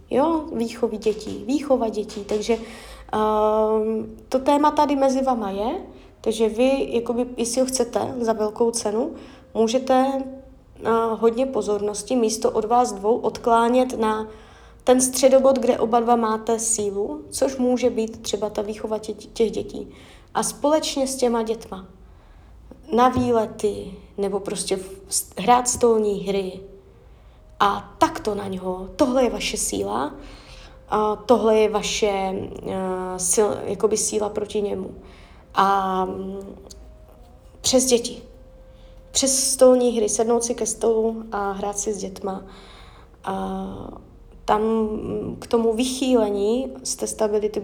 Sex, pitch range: female, 205-245 Hz